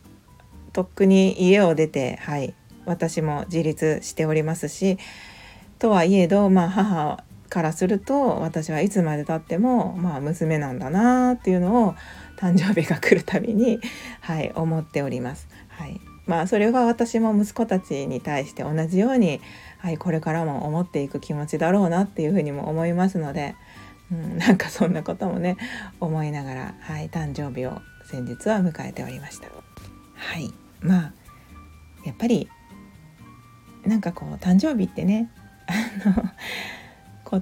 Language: Japanese